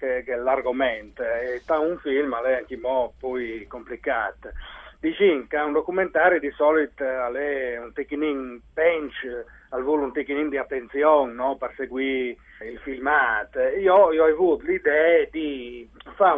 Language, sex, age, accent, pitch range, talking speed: Italian, male, 40-59, native, 135-175 Hz, 130 wpm